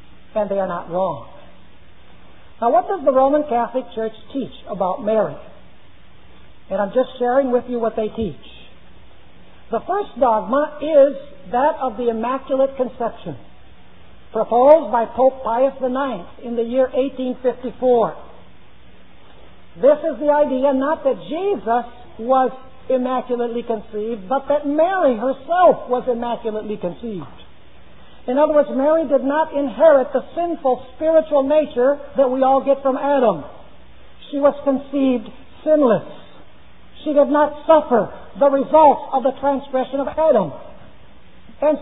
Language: English